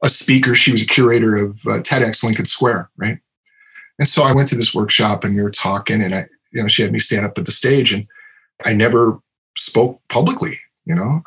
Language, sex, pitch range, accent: English, male, 115-160 Hz, American